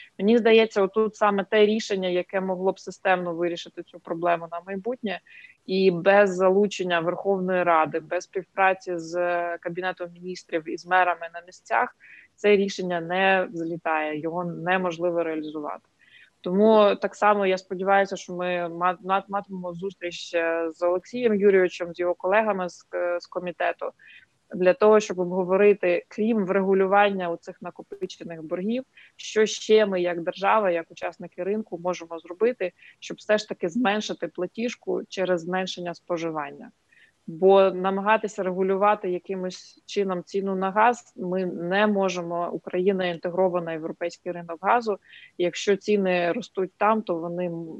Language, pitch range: Ukrainian, 175-200 Hz